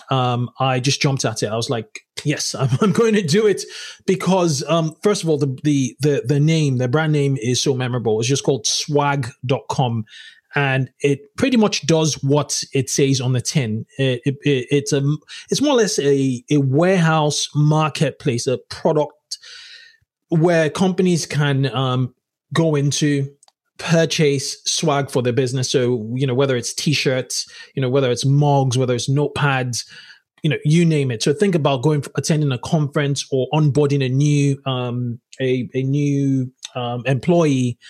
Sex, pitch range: male, 130-150 Hz